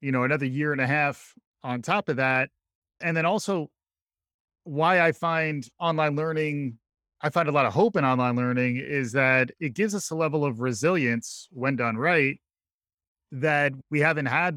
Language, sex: English, male